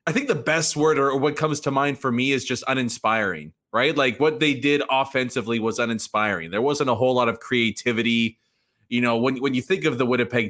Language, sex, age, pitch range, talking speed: English, male, 20-39, 115-145 Hz, 225 wpm